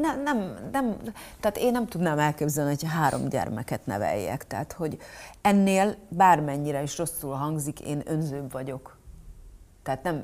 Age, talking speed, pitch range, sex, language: 30-49, 140 wpm, 140-165 Hz, female, Hungarian